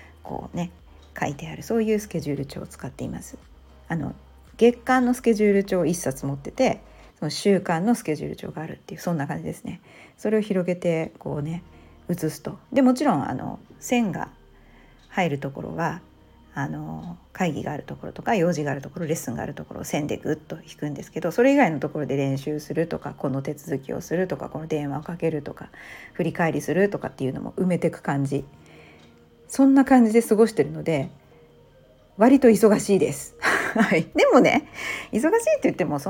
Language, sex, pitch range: Japanese, female, 140-210 Hz